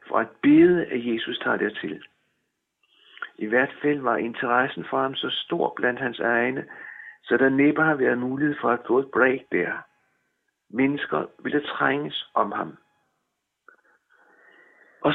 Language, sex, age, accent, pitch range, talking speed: Danish, male, 60-79, native, 125-155 Hz, 150 wpm